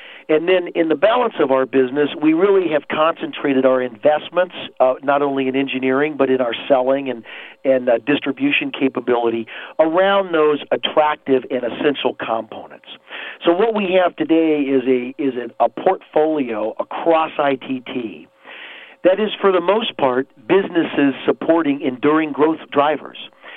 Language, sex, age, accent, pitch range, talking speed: English, male, 50-69, American, 130-165 Hz, 145 wpm